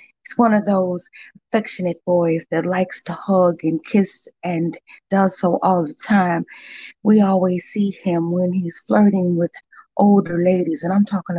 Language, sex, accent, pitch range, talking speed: English, female, American, 175-205 Hz, 165 wpm